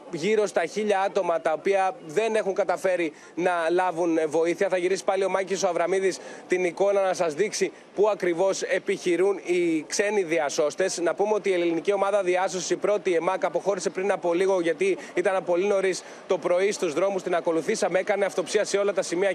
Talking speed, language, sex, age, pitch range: 185 wpm, Greek, male, 20-39, 175-205 Hz